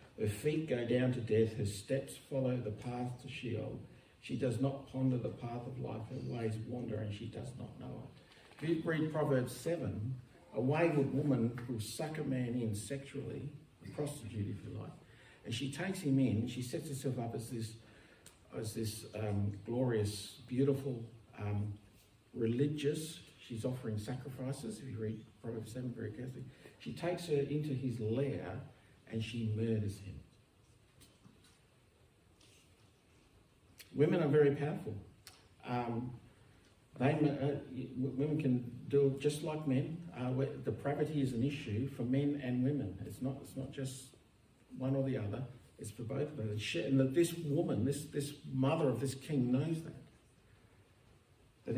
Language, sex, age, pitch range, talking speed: English, male, 60-79, 110-140 Hz, 160 wpm